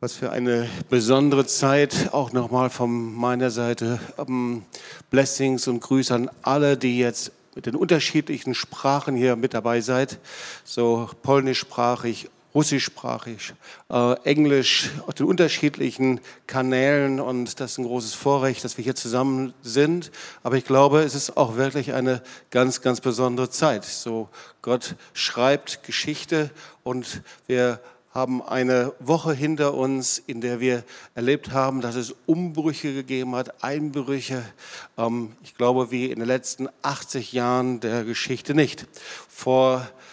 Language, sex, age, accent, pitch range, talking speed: German, male, 50-69, German, 125-140 Hz, 140 wpm